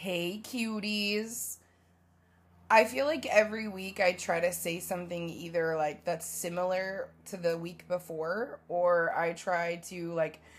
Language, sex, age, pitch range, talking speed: English, female, 20-39, 165-190 Hz, 140 wpm